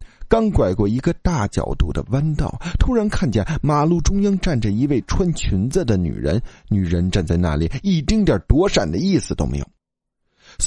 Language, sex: Chinese, male